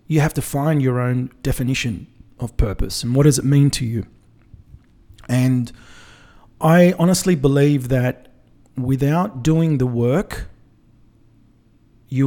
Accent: Australian